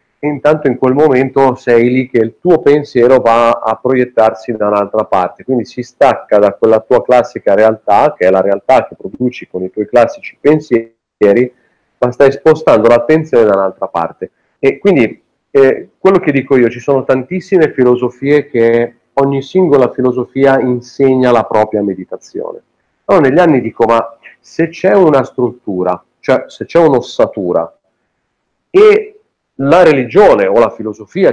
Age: 40-59